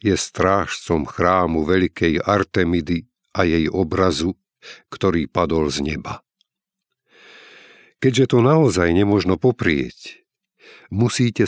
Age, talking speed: 50-69, 95 wpm